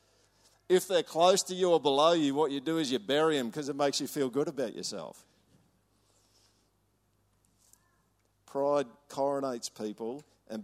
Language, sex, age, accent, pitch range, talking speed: English, male, 50-69, Australian, 100-125 Hz, 150 wpm